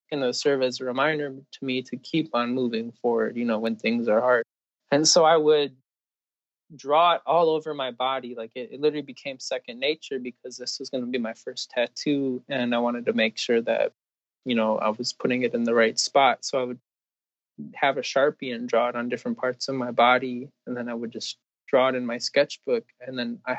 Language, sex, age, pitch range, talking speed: English, male, 20-39, 120-145 Hz, 230 wpm